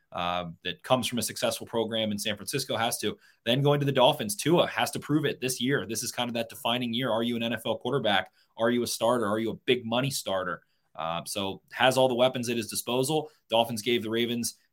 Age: 20-39